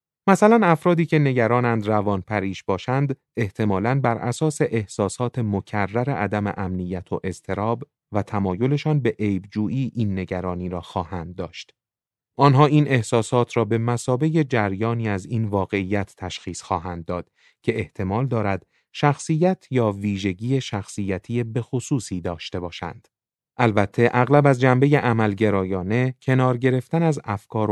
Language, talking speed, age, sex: Persian, 125 wpm, 30-49, male